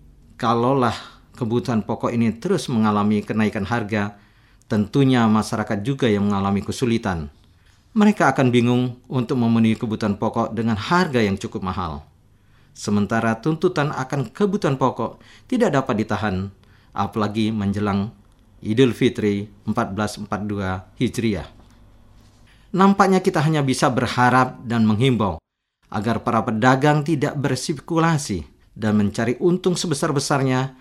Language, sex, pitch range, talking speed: Indonesian, male, 105-135 Hz, 110 wpm